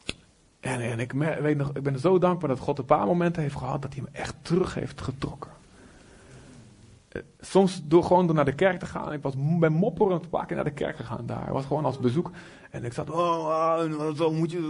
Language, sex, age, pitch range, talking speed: Dutch, male, 30-49, 130-165 Hz, 235 wpm